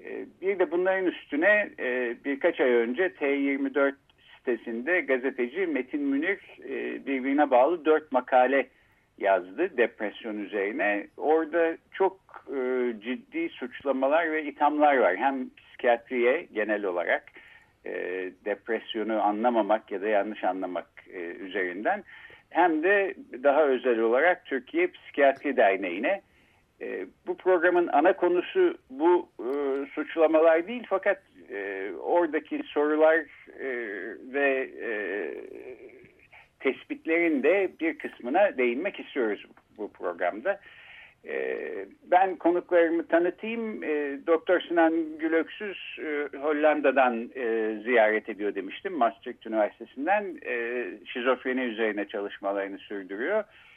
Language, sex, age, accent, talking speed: Turkish, male, 60-79, native, 100 wpm